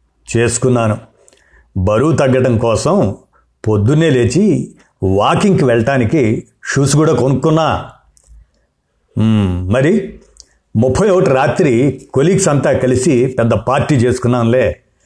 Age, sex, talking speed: 60-79, male, 75 wpm